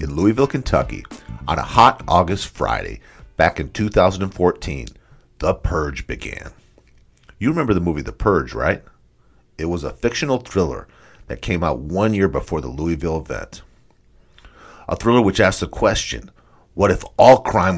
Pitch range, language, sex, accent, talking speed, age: 80-105 Hz, English, male, American, 150 wpm, 50-69